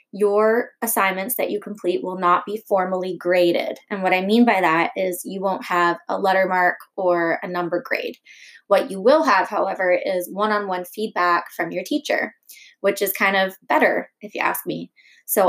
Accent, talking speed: American, 185 wpm